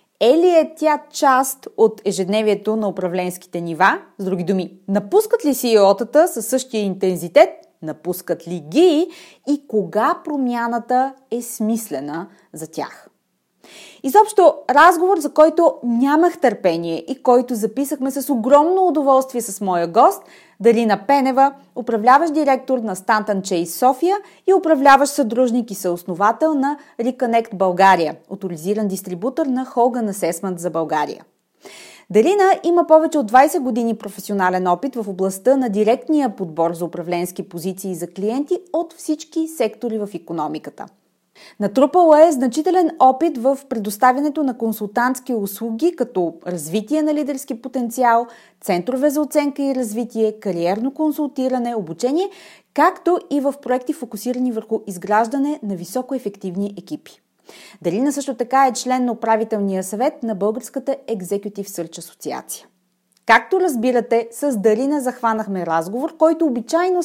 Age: 30-49